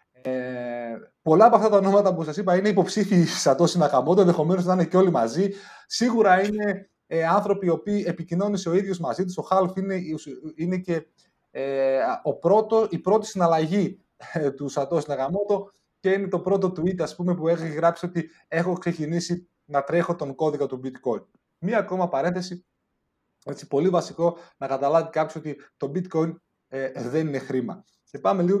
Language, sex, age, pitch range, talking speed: Greek, male, 30-49, 140-190 Hz, 170 wpm